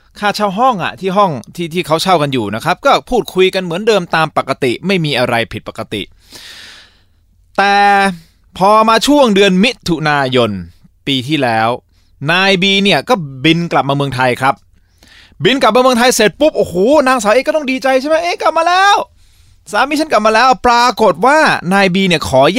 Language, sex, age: Thai, male, 20-39